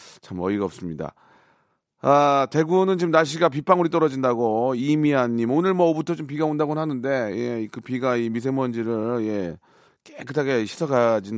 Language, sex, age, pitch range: Korean, male, 30-49, 110-160 Hz